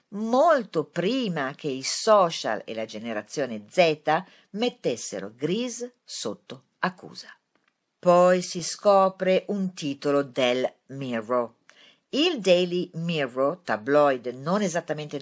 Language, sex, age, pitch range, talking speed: Italian, female, 50-69, 140-225 Hz, 105 wpm